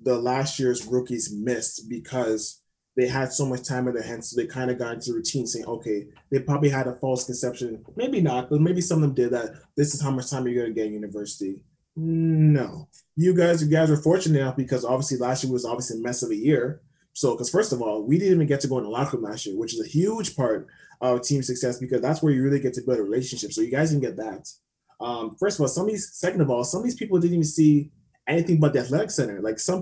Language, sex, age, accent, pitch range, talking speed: English, male, 20-39, American, 125-160 Hz, 265 wpm